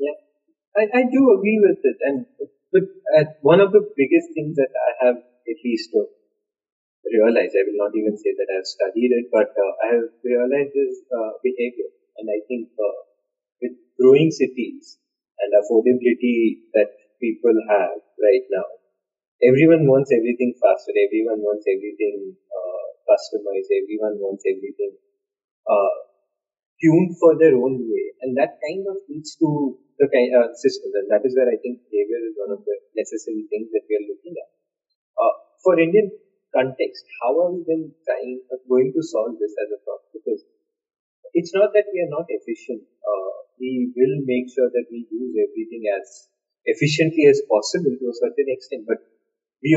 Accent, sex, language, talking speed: Indian, male, English, 170 wpm